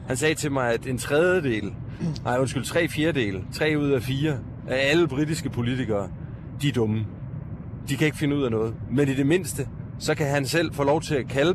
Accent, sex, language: native, male, Danish